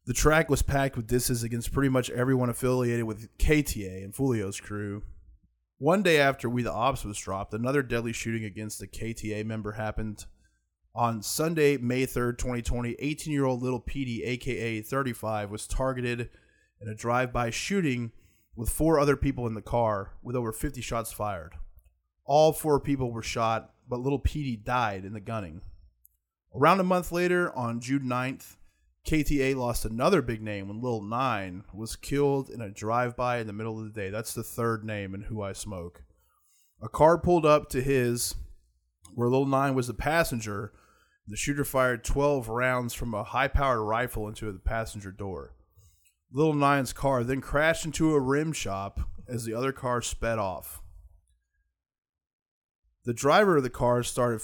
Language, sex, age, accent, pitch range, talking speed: English, male, 20-39, American, 105-135 Hz, 170 wpm